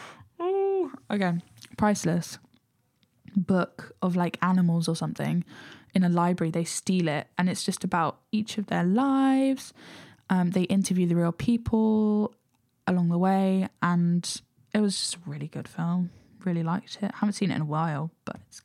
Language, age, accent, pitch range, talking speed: English, 10-29, British, 175-205 Hz, 160 wpm